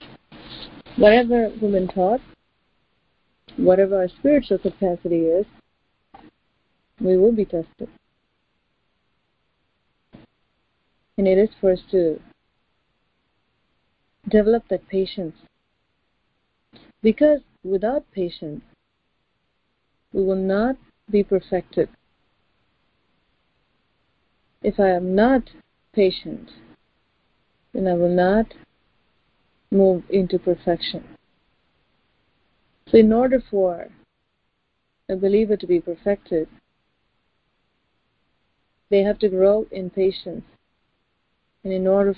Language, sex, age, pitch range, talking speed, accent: English, female, 40-59, 180-215 Hz, 85 wpm, Indian